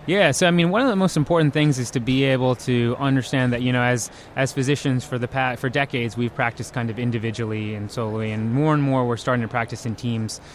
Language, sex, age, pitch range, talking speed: English, male, 20-39, 115-130 Hz, 250 wpm